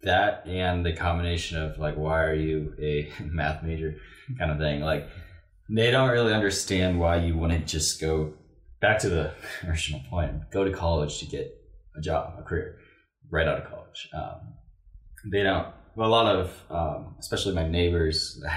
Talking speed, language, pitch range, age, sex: 180 wpm, English, 75-90 Hz, 20-39, male